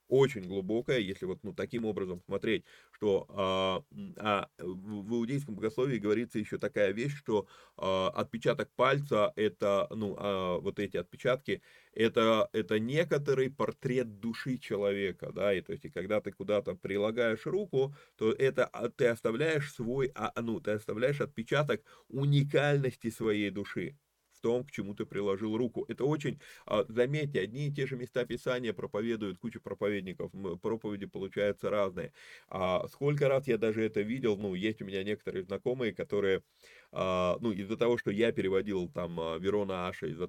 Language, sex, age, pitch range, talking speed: Russian, male, 20-39, 100-130 Hz, 135 wpm